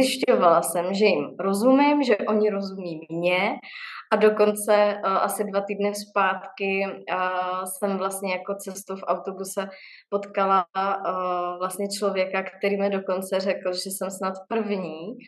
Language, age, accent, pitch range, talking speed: Czech, 20-39, native, 185-205 Hz, 125 wpm